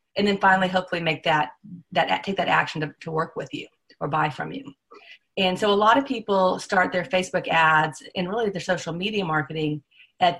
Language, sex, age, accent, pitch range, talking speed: English, female, 40-59, American, 165-210 Hz, 210 wpm